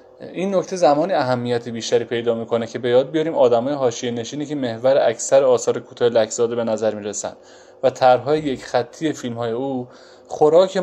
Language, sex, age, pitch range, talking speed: Persian, male, 20-39, 120-160 Hz, 165 wpm